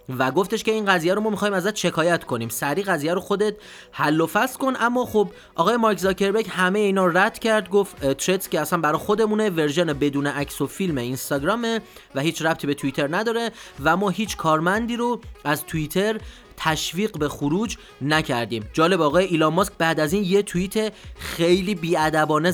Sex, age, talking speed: male, 30-49, 180 wpm